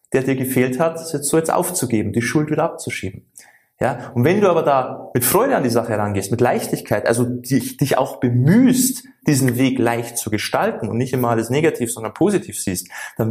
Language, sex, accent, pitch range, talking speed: German, male, German, 115-145 Hz, 205 wpm